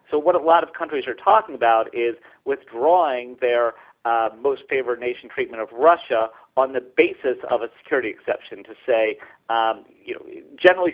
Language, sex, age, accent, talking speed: English, male, 40-59, American, 175 wpm